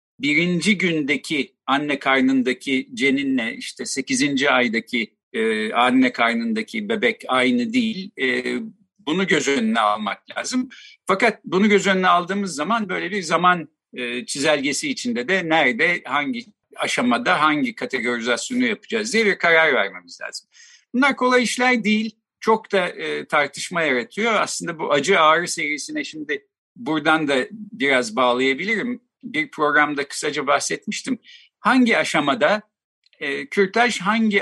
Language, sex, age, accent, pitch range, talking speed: Turkish, male, 50-69, native, 140-225 Hz, 120 wpm